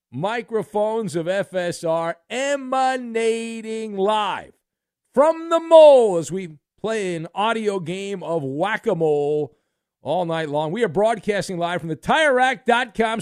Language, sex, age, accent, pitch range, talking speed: English, male, 50-69, American, 155-225 Hz, 120 wpm